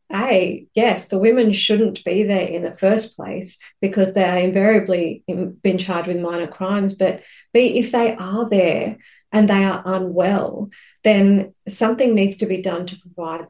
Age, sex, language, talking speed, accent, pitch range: 40-59, female, English, 170 wpm, Australian, 185-220 Hz